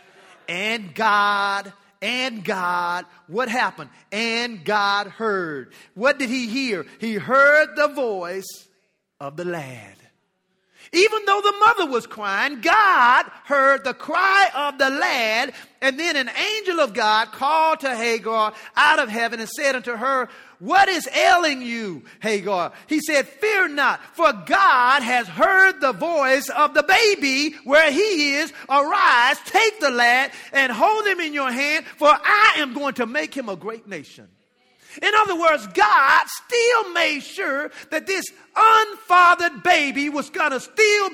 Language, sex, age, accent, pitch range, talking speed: English, male, 40-59, American, 235-355 Hz, 155 wpm